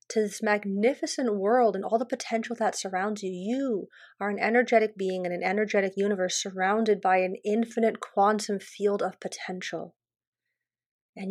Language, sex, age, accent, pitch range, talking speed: English, female, 30-49, American, 190-230 Hz, 155 wpm